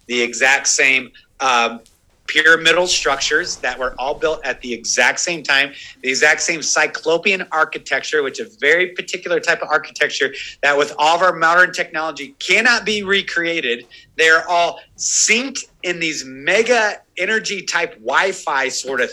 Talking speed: 155 wpm